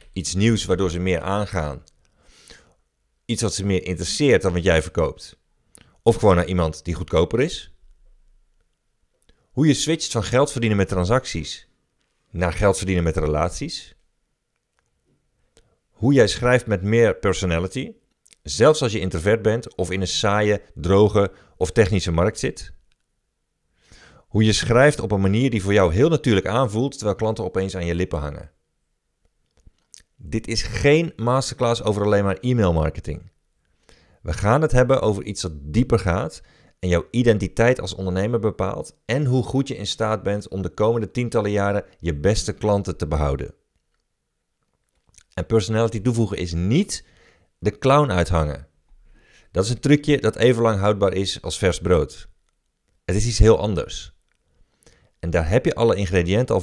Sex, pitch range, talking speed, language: male, 90-115 Hz, 155 wpm, Dutch